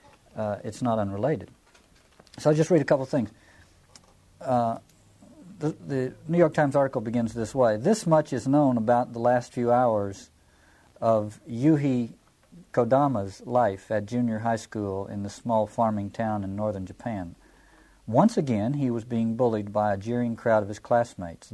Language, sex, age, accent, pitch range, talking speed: English, male, 50-69, American, 105-135 Hz, 165 wpm